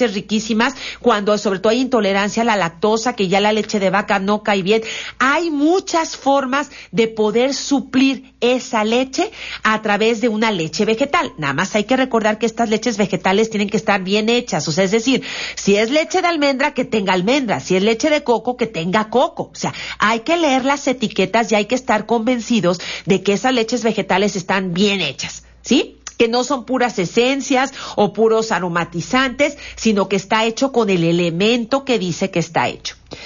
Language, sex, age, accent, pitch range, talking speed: Spanish, female, 40-59, Mexican, 200-255 Hz, 195 wpm